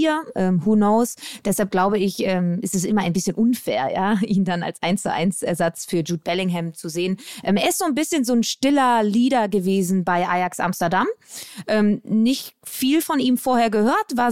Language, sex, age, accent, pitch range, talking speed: German, female, 20-39, German, 195-240 Hz, 205 wpm